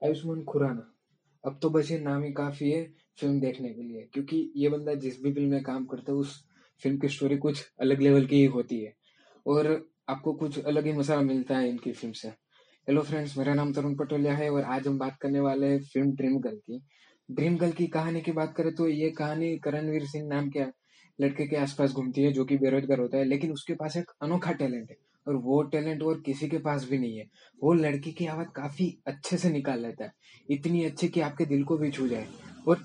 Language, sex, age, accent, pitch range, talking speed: Hindi, male, 20-39, native, 135-155 Hz, 225 wpm